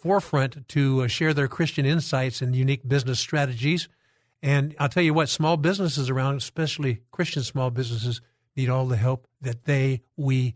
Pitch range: 130-150 Hz